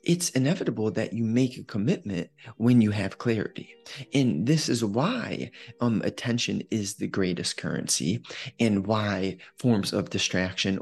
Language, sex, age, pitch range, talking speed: English, male, 20-39, 95-125 Hz, 145 wpm